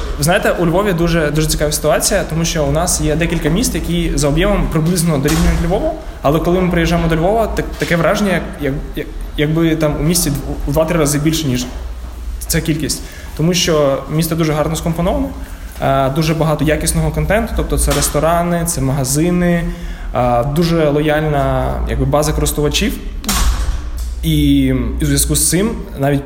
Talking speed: 160 wpm